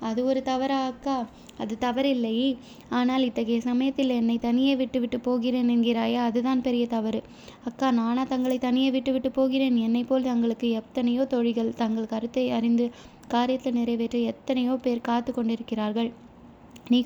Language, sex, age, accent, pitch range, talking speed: Tamil, female, 20-39, native, 230-255 Hz, 135 wpm